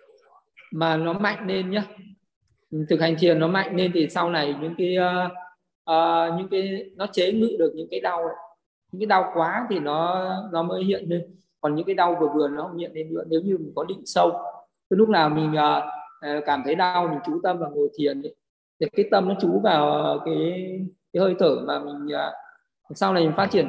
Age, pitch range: 20-39, 155-195 Hz